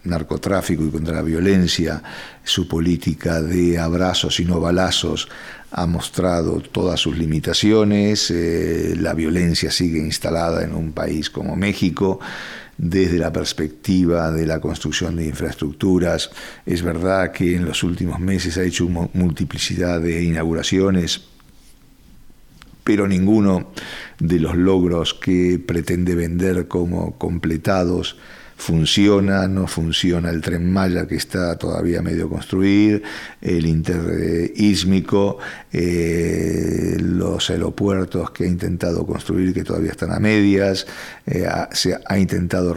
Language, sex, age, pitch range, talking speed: English, male, 50-69, 80-95 Hz, 125 wpm